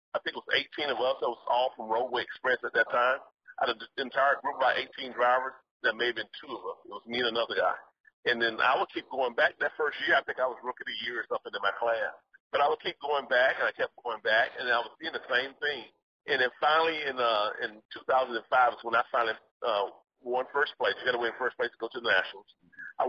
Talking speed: 275 wpm